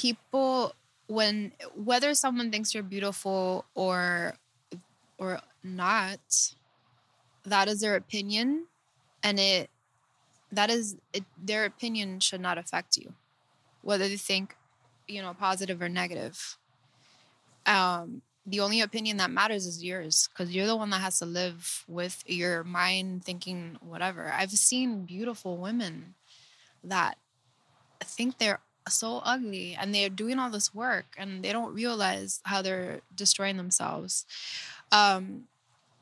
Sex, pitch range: female, 180-215 Hz